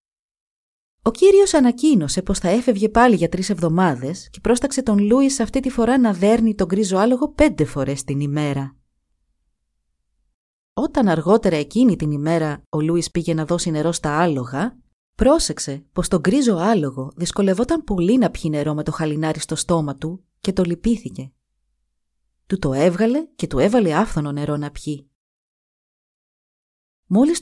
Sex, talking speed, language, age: female, 150 wpm, Greek, 30-49